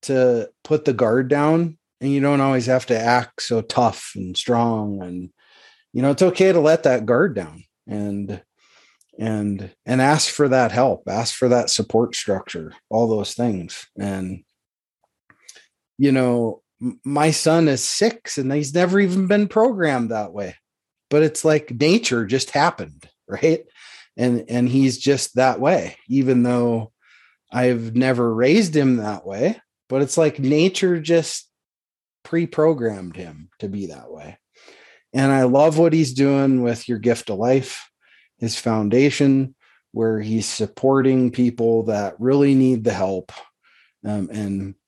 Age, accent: 30-49, American